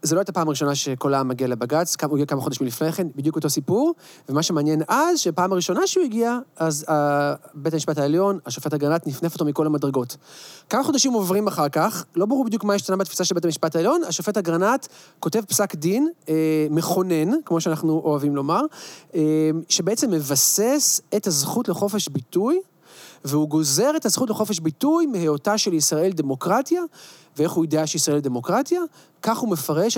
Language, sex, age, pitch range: Hebrew, male, 30-49, 150-210 Hz